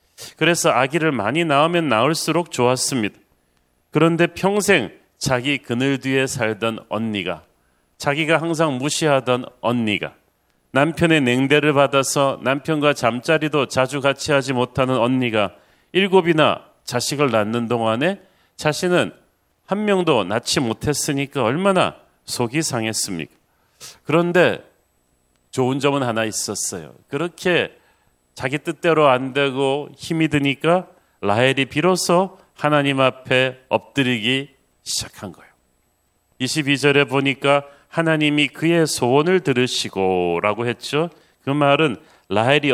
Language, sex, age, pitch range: Korean, male, 40-59, 115-155 Hz